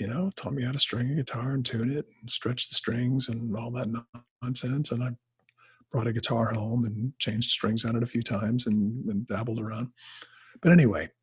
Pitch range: 115-145 Hz